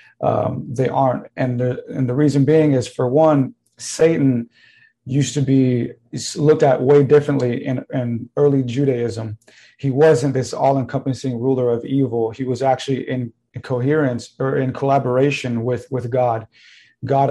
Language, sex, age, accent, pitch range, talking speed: English, male, 30-49, American, 125-135 Hz, 150 wpm